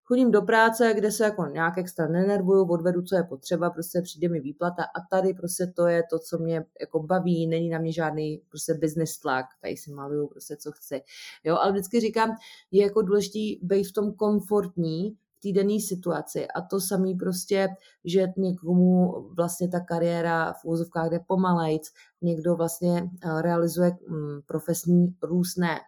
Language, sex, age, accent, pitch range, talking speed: Czech, female, 30-49, native, 170-195 Hz, 160 wpm